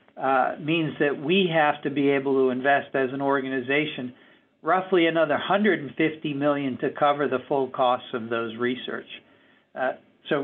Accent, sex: American, male